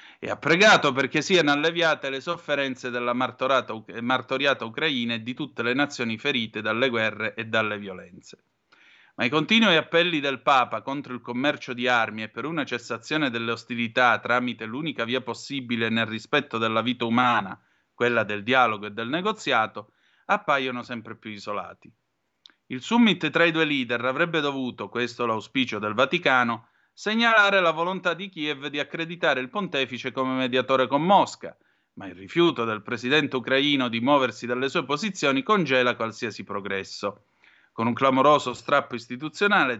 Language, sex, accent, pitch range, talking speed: Italian, male, native, 115-150 Hz, 155 wpm